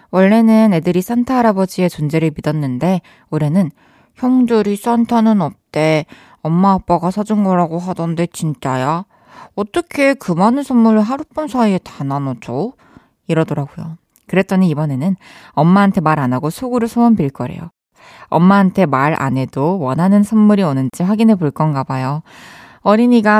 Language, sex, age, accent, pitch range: Korean, female, 20-39, native, 165-220 Hz